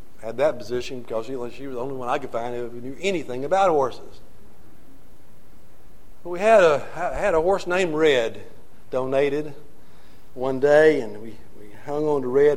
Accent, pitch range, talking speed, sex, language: American, 105-135 Hz, 175 wpm, male, English